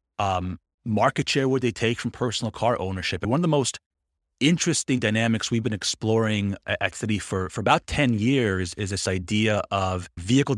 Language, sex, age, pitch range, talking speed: English, male, 30-49, 95-120 Hz, 180 wpm